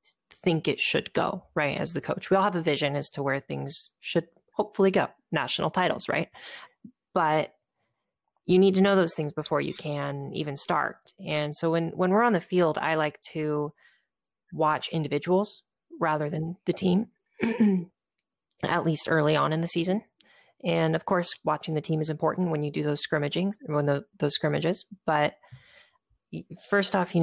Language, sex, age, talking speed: English, female, 30-49, 175 wpm